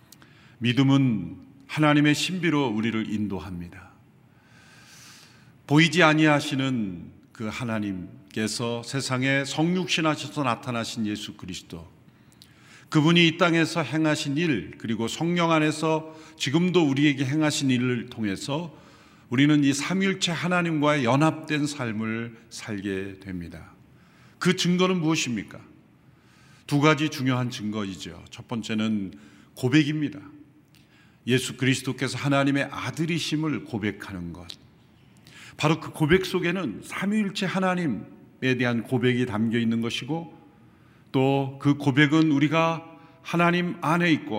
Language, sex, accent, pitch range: Korean, male, native, 115-165 Hz